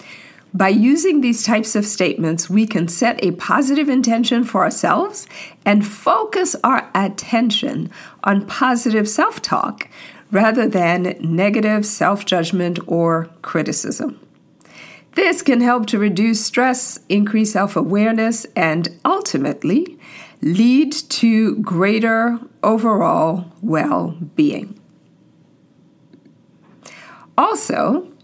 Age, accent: 50-69, American